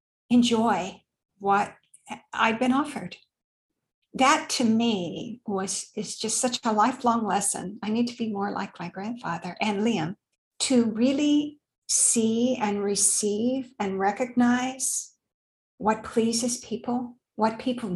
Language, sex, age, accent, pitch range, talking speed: English, female, 50-69, American, 205-245 Hz, 125 wpm